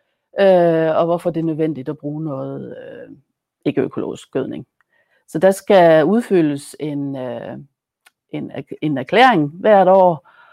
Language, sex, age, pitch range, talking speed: Danish, female, 60-79, 150-190 Hz, 125 wpm